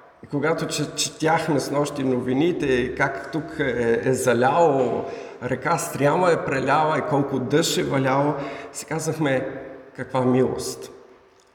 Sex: male